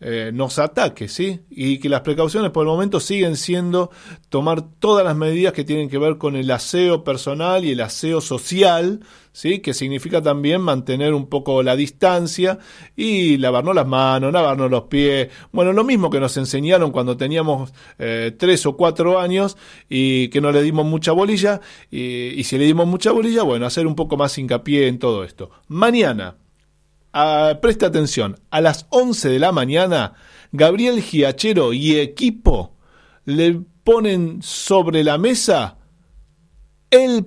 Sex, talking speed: male, 160 wpm